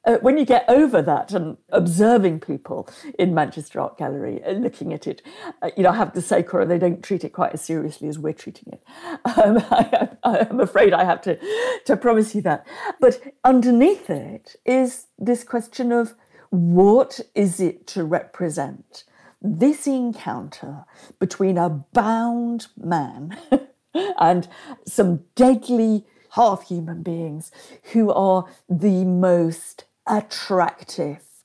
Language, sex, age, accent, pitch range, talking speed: English, female, 50-69, British, 175-255 Hz, 140 wpm